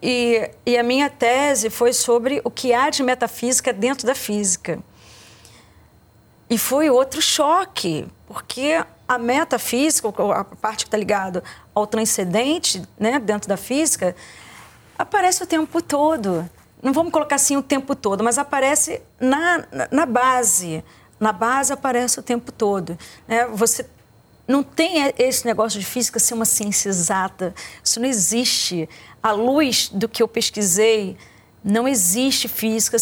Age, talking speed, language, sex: 40-59, 145 wpm, Portuguese, female